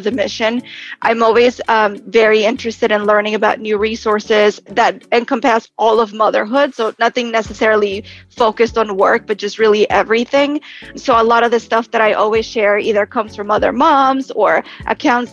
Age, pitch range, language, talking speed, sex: 20-39, 215-250 Hz, English, 170 wpm, female